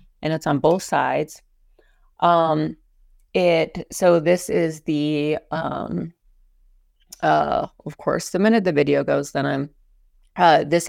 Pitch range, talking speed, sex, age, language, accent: 145-170 Hz, 130 wpm, female, 30-49, English, American